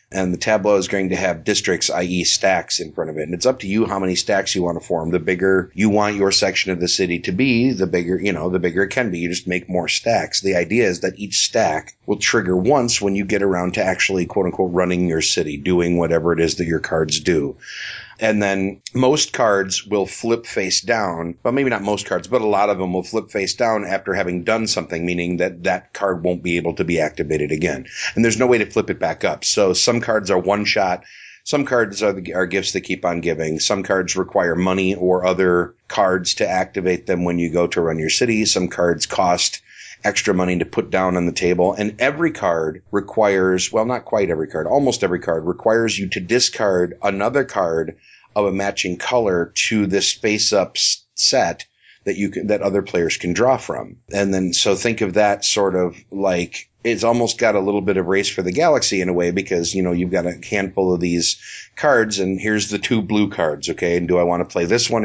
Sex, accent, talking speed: male, American, 230 wpm